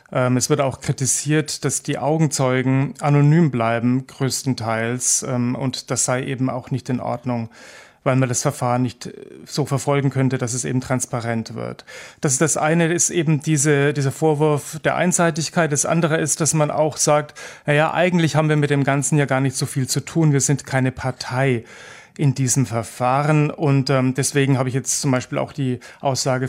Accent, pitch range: German, 130-145 Hz